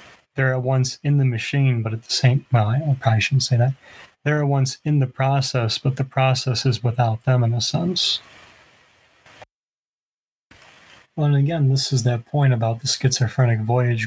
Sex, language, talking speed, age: male, English, 180 wpm, 30-49